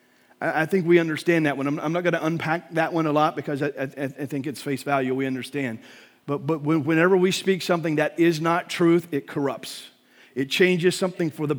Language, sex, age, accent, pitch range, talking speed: English, male, 40-59, American, 140-170 Hz, 200 wpm